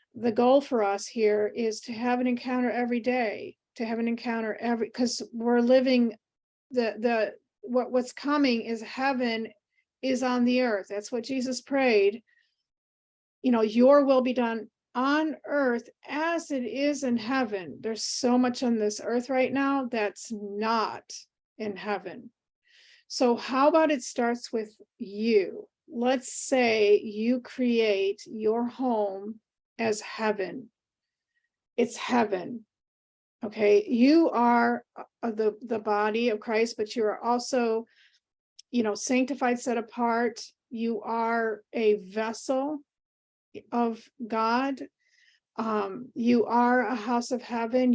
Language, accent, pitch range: English, American, 220-255 Hz